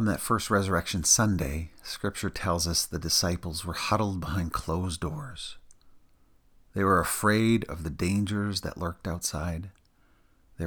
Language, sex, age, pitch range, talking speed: English, male, 40-59, 80-100 Hz, 140 wpm